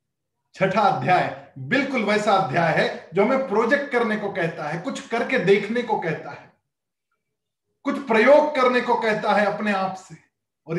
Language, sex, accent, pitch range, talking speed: Hindi, male, native, 160-225 Hz, 160 wpm